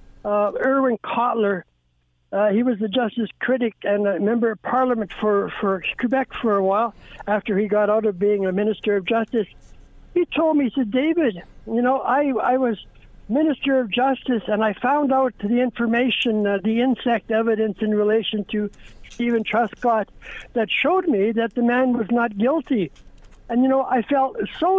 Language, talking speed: English, 180 wpm